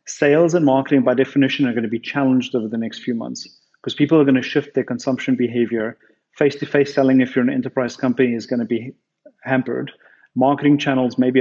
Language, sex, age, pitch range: English, male, 30-49, 125-145 Hz